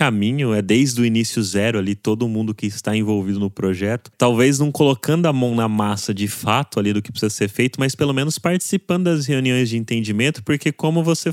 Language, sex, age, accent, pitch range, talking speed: Portuguese, male, 20-39, Brazilian, 110-150 Hz, 210 wpm